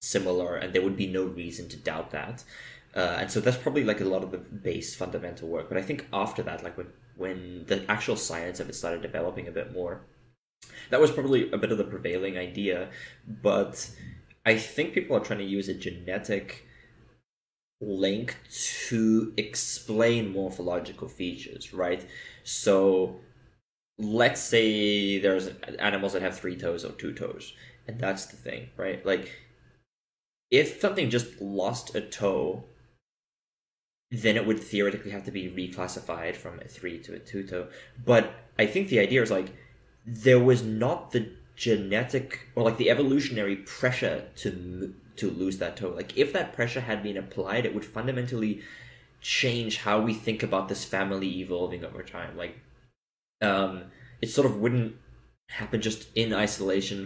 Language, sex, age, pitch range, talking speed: English, male, 10-29, 95-115 Hz, 165 wpm